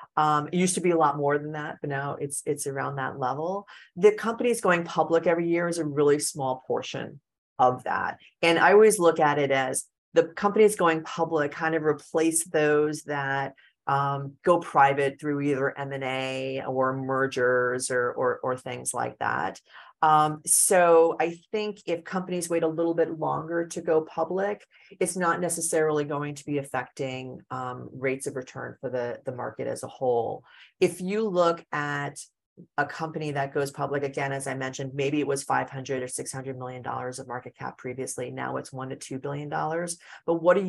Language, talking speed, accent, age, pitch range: English, 185 wpm, American, 30-49, 135-165 Hz